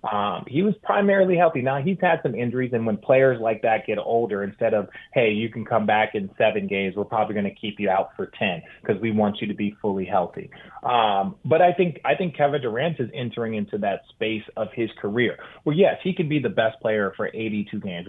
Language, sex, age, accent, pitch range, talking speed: English, male, 30-49, American, 105-145 Hz, 235 wpm